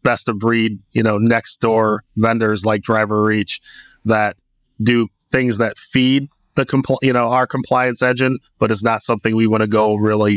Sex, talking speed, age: male, 185 wpm, 30-49